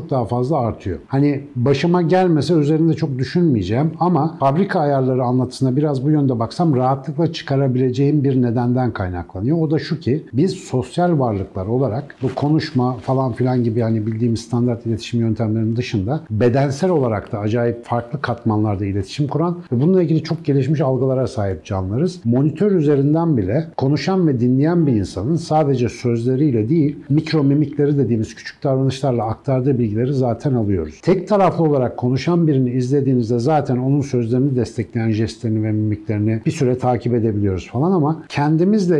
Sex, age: male, 60-79